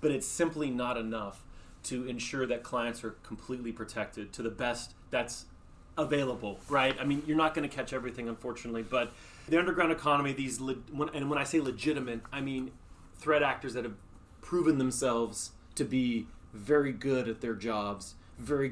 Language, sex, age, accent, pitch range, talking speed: English, male, 30-49, American, 115-140 Hz, 175 wpm